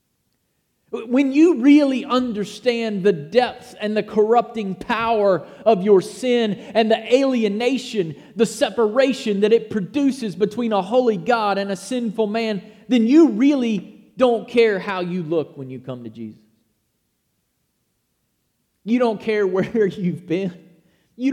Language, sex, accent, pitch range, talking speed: English, male, American, 210-250 Hz, 140 wpm